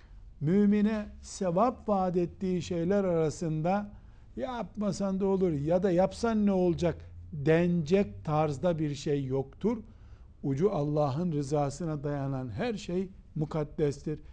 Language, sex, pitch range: Turkish, male, 130-180 Hz